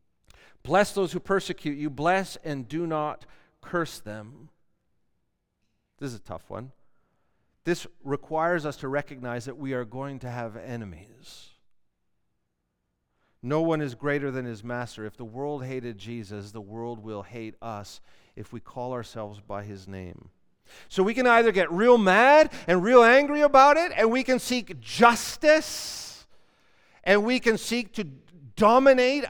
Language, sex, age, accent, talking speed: English, male, 40-59, American, 155 wpm